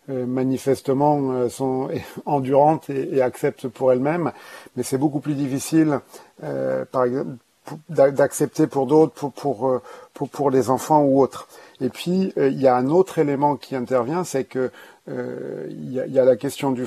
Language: French